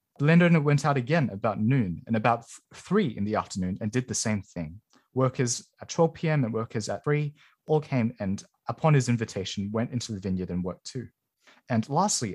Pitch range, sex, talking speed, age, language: 110-150 Hz, male, 200 wpm, 20-39, English